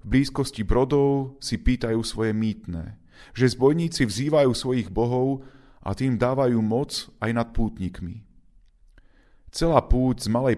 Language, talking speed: Slovak, 125 wpm